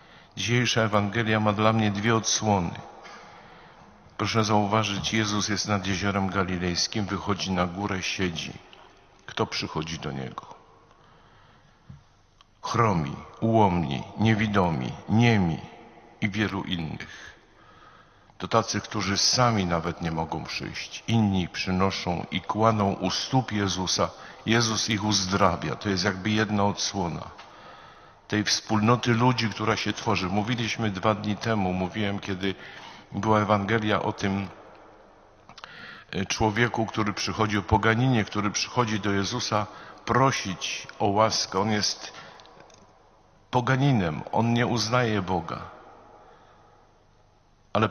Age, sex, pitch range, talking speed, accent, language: 50-69, male, 95-110 Hz, 110 wpm, native, Polish